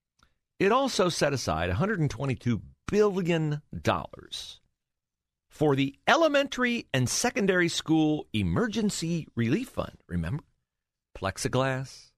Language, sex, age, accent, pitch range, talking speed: English, male, 50-69, American, 115-195 Hz, 85 wpm